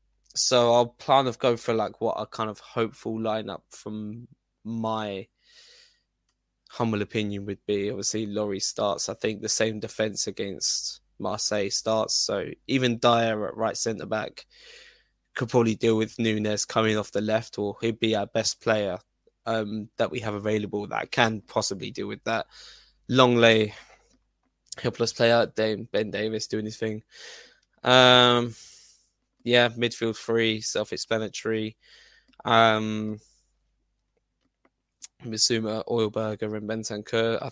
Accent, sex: British, male